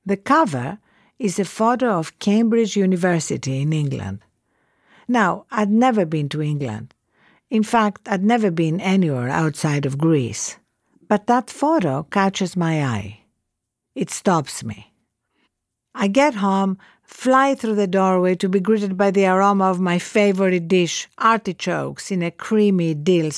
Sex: female